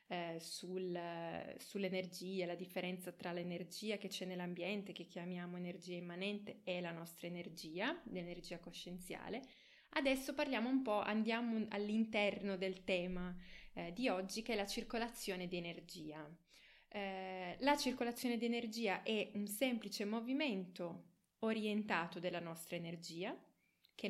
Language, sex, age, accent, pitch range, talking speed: Italian, female, 20-39, native, 180-220 Hz, 120 wpm